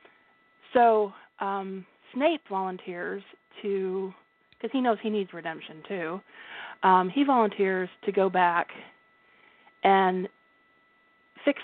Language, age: English, 40-59